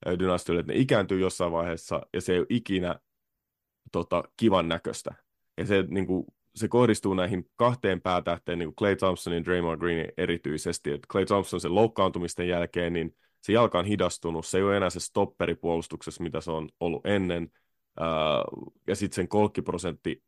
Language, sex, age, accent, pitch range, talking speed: Finnish, male, 30-49, native, 85-100 Hz, 170 wpm